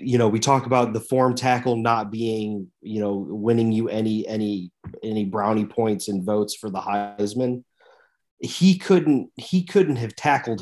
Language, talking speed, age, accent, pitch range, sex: English, 170 wpm, 30-49, American, 110-130 Hz, male